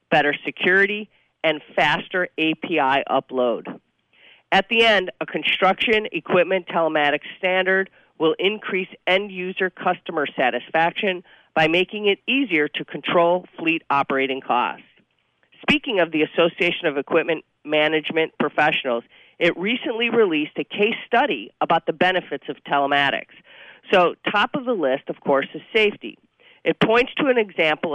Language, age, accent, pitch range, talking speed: English, 40-59, American, 150-195 Hz, 130 wpm